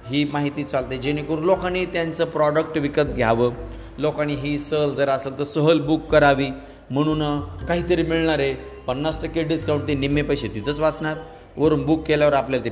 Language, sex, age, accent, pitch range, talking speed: Marathi, male, 40-59, native, 125-160 Hz, 155 wpm